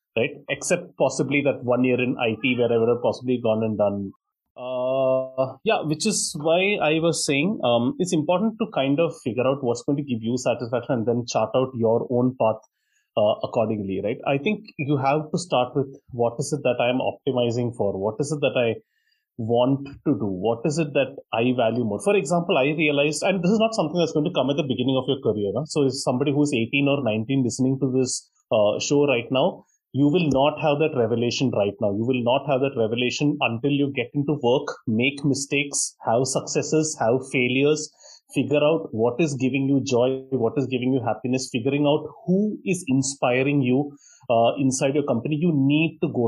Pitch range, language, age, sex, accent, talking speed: 120-150 Hz, English, 30-49, male, Indian, 210 wpm